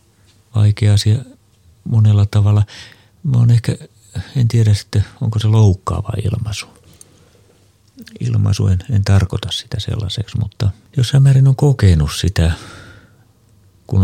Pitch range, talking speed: 100-110 Hz, 115 wpm